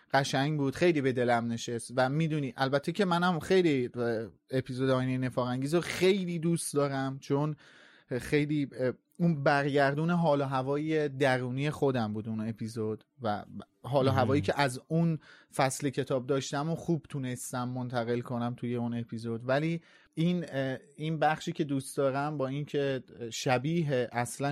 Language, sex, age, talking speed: Persian, male, 30-49, 145 wpm